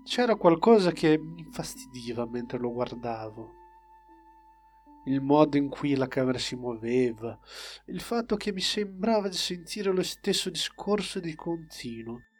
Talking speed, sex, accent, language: 135 wpm, male, native, Italian